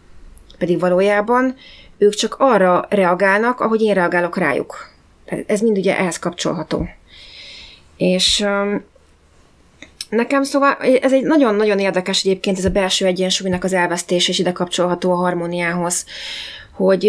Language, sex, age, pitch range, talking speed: Hungarian, female, 30-49, 170-205 Hz, 125 wpm